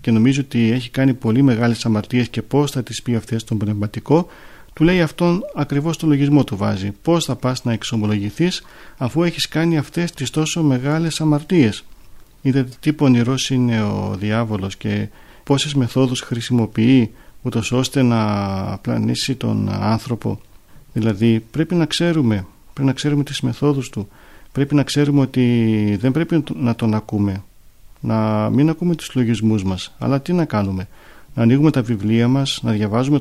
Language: Greek